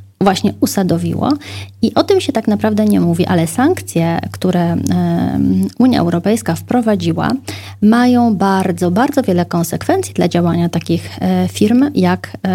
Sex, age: female, 20-39